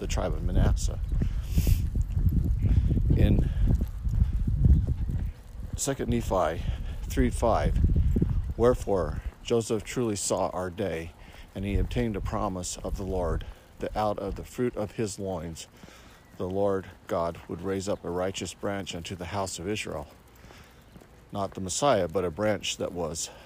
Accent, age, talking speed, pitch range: American, 50-69, 135 wpm, 85-105 Hz